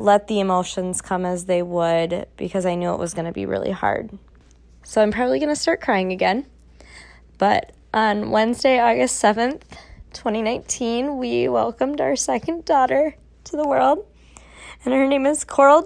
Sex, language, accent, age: female, English, American, 20-39